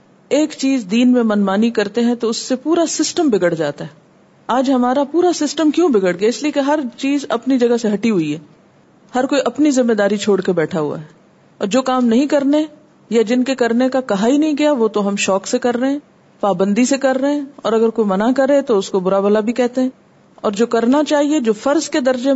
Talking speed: 245 wpm